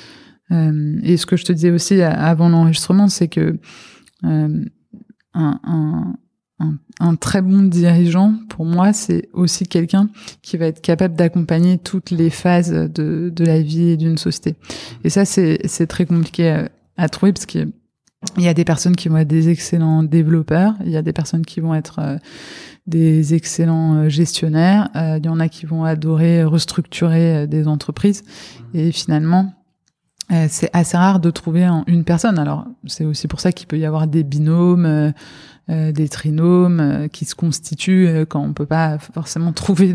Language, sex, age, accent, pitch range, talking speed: French, female, 20-39, French, 155-180 Hz, 175 wpm